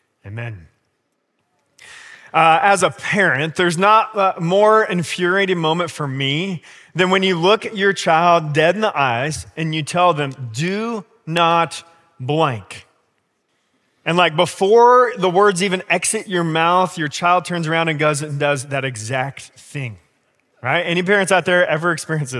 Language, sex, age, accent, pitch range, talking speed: English, male, 30-49, American, 150-190 Hz, 155 wpm